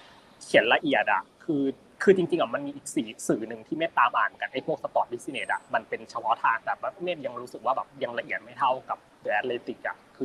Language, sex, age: Thai, male, 20-39